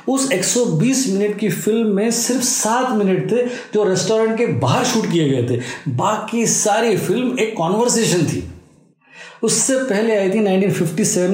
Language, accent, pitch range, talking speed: Hindi, native, 175-225 Hz, 155 wpm